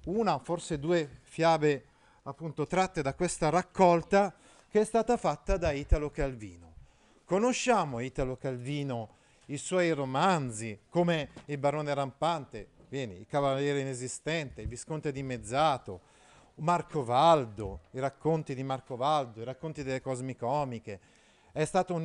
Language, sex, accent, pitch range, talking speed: Italian, male, native, 125-180 Hz, 130 wpm